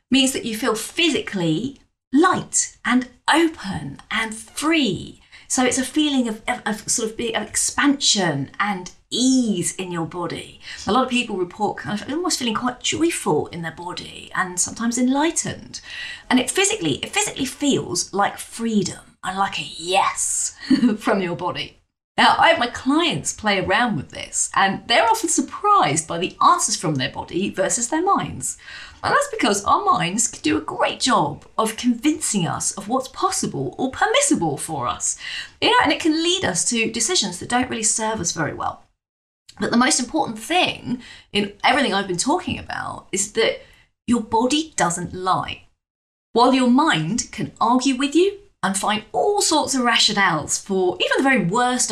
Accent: British